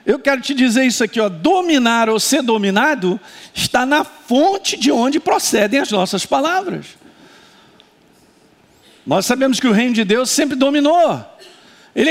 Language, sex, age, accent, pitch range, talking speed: Portuguese, male, 50-69, Brazilian, 200-275 Hz, 145 wpm